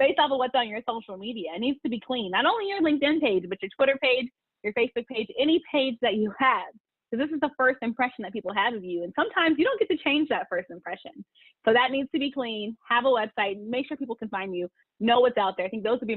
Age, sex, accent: 30-49, female, American